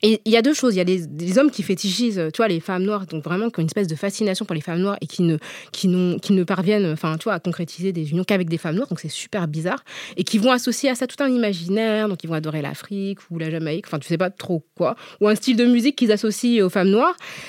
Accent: French